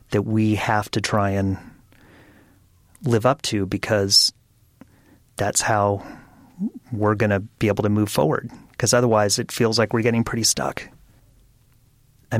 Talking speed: 145 wpm